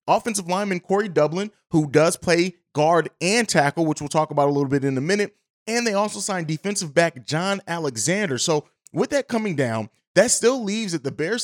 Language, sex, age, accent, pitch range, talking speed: English, male, 20-39, American, 145-195 Hz, 205 wpm